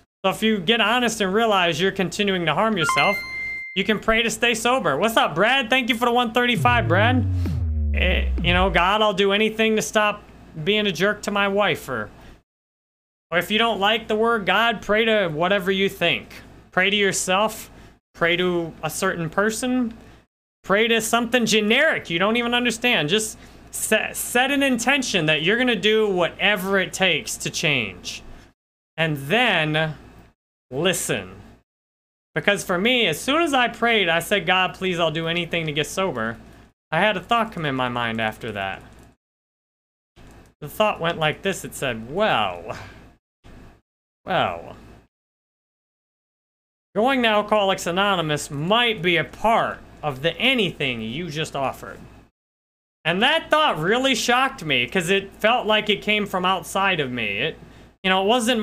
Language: English